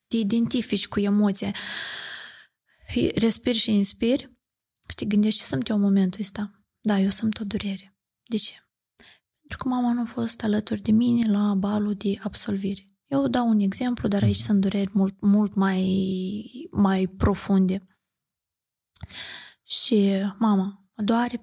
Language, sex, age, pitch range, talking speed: Romanian, female, 20-39, 195-235 Hz, 145 wpm